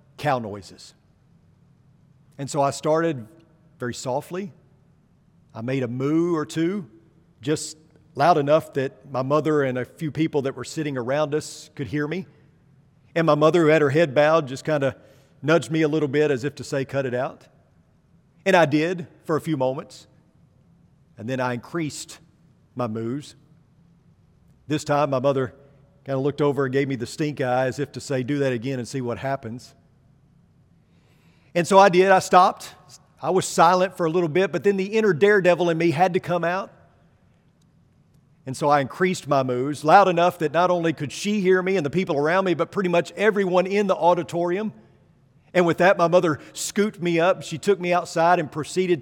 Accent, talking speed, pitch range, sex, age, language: American, 195 wpm, 135-165 Hz, male, 50-69, English